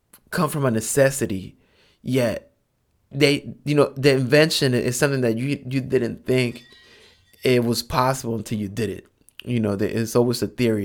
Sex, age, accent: male, 20-39, American